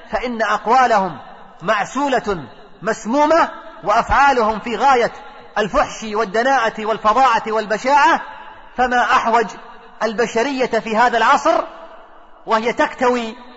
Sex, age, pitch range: male, 40-59, 220-250 Hz